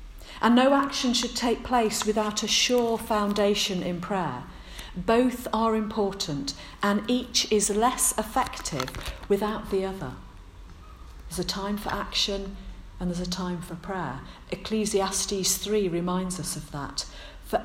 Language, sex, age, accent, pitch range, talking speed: English, female, 50-69, British, 155-210 Hz, 140 wpm